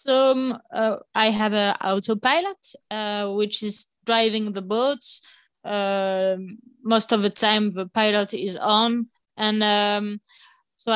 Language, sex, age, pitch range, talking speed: English, female, 20-39, 205-245 Hz, 130 wpm